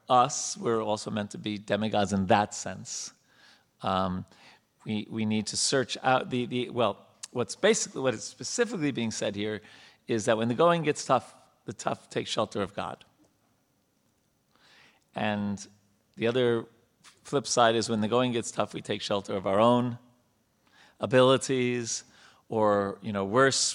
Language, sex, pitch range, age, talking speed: English, male, 105-125 Hz, 40-59, 160 wpm